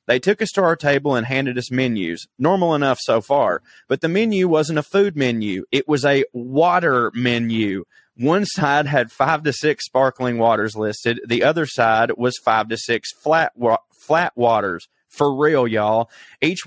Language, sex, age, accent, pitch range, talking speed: English, male, 30-49, American, 120-150 Hz, 175 wpm